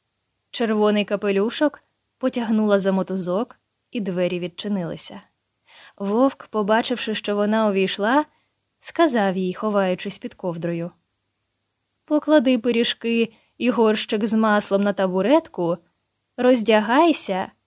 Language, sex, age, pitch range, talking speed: Ukrainian, female, 20-39, 180-245 Hz, 90 wpm